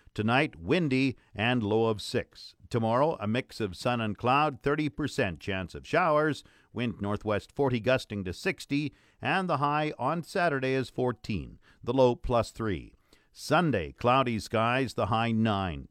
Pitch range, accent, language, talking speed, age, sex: 110-145 Hz, American, English, 150 wpm, 50-69, male